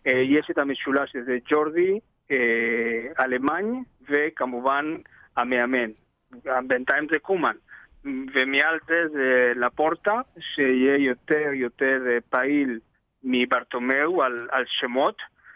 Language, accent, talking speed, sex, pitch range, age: Hebrew, Spanish, 85 wpm, male, 125-150 Hz, 50-69